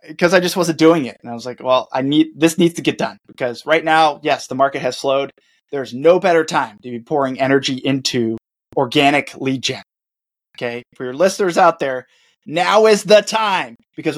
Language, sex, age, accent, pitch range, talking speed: English, male, 20-39, American, 130-180 Hz, 205 wpm